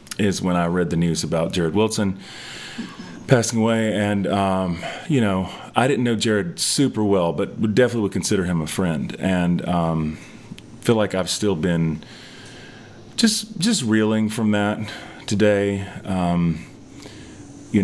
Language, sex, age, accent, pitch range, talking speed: English, male, 30-49, American, 90-110 Hz, 150 wpm